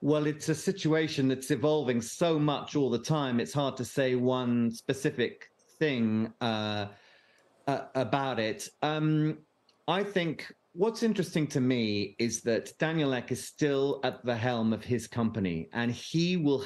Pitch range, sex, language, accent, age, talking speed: 115-145 Hz, male, English, British, 40-59, 160 wpm